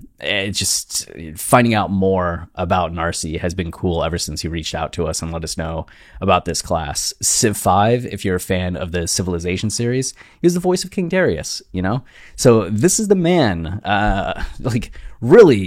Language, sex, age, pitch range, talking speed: English, male, 20-39, 90-110 Hz, 195 wpm